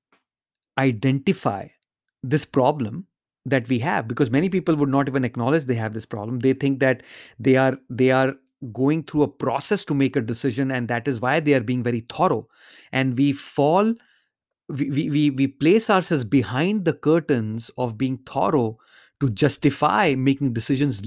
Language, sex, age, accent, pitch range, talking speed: English, male, 30-49, Indian, 130-155 Hz, 170 wpm